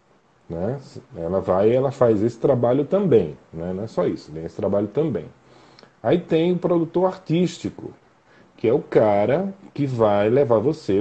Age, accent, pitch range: 40-59, Brazilian, 105-155 Hz